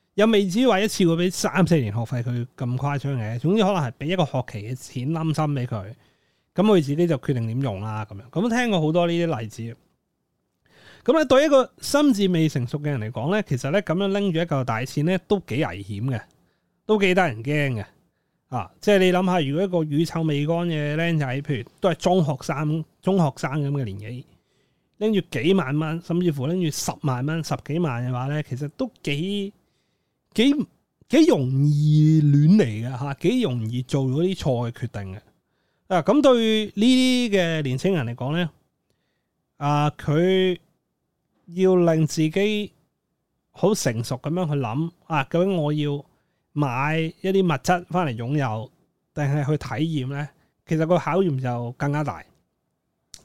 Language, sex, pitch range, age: Chinese, male, 135-185 Hz, 30-49